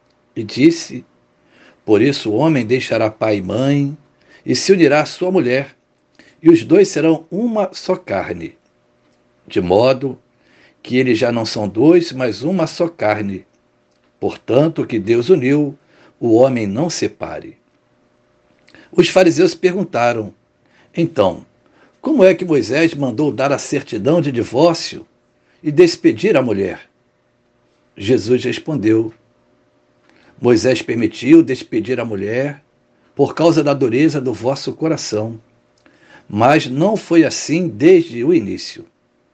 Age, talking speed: 60-79, 125 wpm